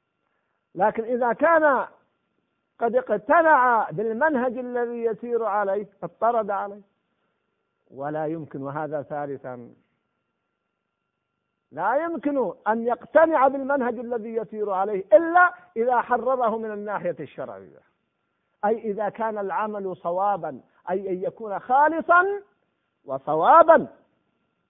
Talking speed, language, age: 95 wpm, Arabic, 50-69